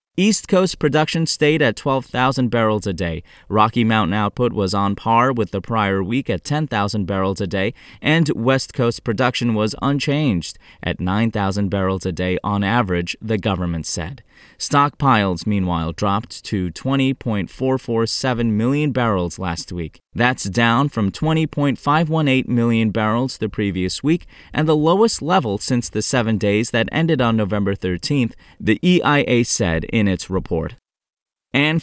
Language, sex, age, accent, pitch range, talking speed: English, male, 20-39, American, 105-145 Hz, 145 wpm